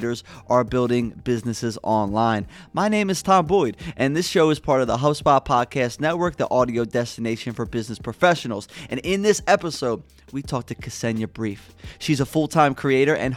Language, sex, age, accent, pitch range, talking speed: English, male, 20-39, American, 120-170 Hz, 175 wpm